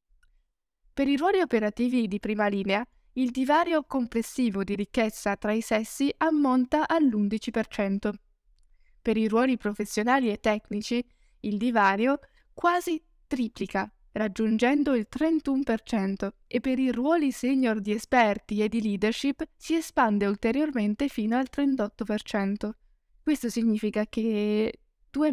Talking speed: 120 wpm